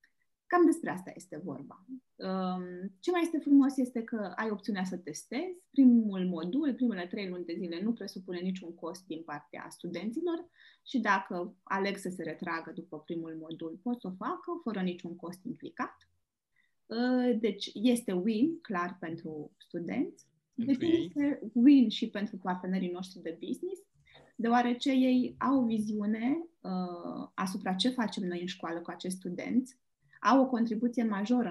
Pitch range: 175-245 Hz